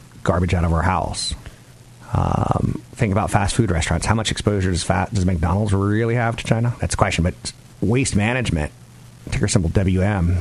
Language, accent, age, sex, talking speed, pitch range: English, American, 40-59, male, 175 wpm, 90-115 Hz